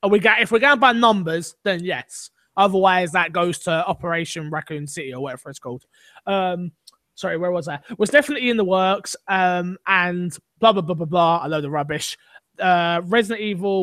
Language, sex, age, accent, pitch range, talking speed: English, male, 20-39, British, 165-205 Hz, 190 wpm